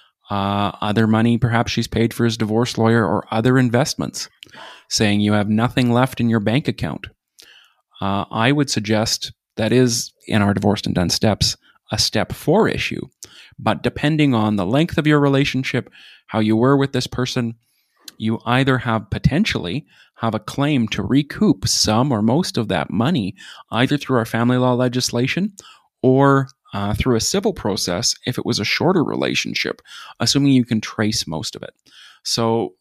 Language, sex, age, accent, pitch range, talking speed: English, male, 30-49, American, 110-130 Hz, 170 wpm